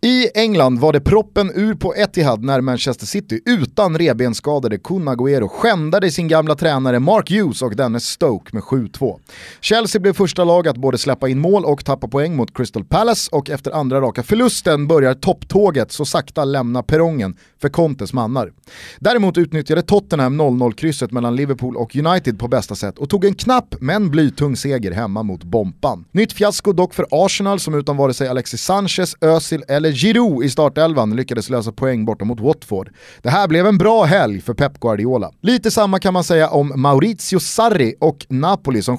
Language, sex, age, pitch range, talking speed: Swedish, male, 30-49, 125-180 Hz, 185 wpm